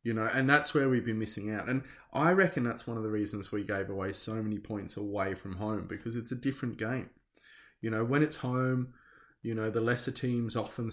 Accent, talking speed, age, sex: Australian, 230 wpm, 20-39, male